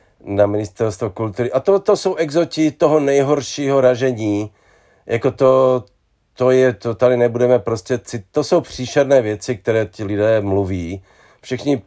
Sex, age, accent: male, 40-59, native